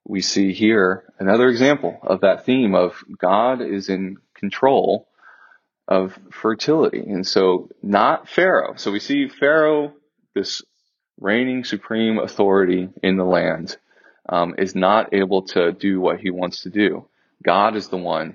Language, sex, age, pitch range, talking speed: English, male, 30-49, 95-105 Hz, 145 wpm